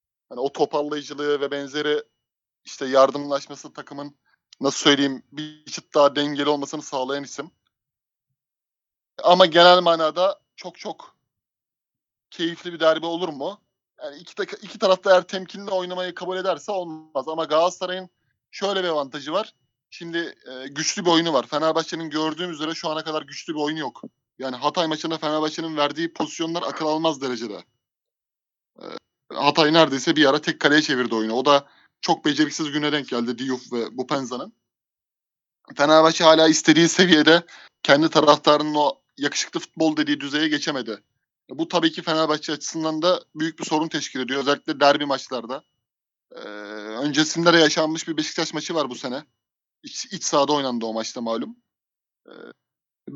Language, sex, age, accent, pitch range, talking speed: Turkish, male, 30-49, native, 140-165 Hz, 150 wpm